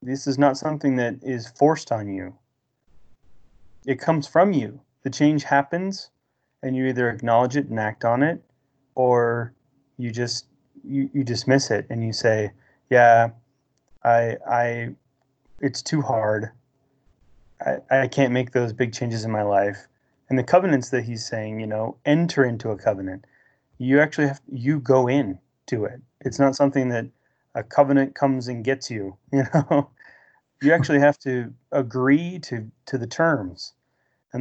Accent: American